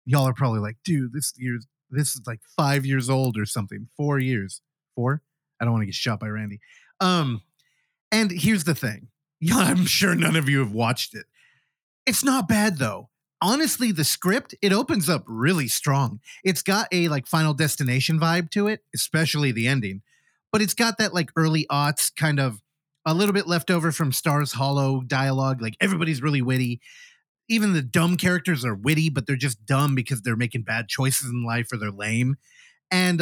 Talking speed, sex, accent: 190 wpm, male, American